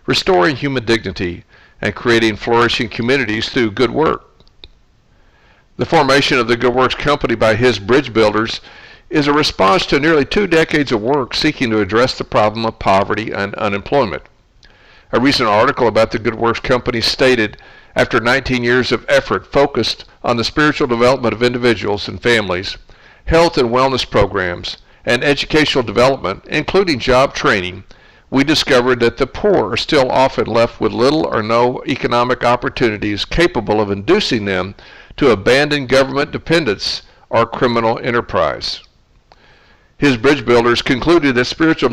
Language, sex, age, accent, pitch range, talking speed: English, male, 60-79, American, 110-135 Hz, 150 wpm